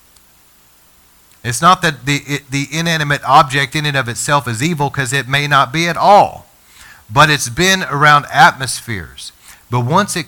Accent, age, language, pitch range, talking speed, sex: American, 40-59, English, 100-140 Hz, 170 wpm, male